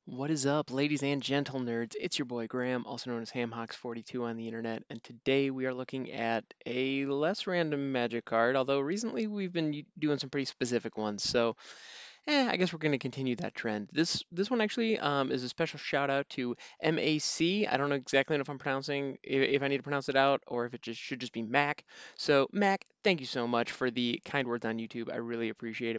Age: 20-39